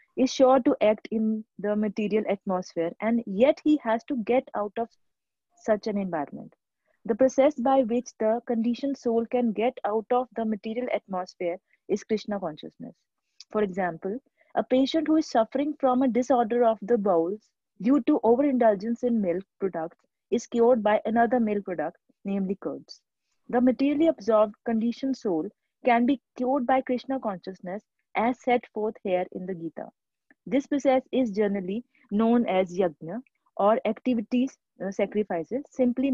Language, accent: English, Indian